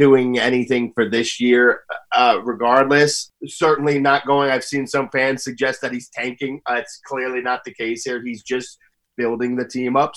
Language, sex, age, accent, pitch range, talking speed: English, male, 30-49, American, 120-145 Hz, 185 wpm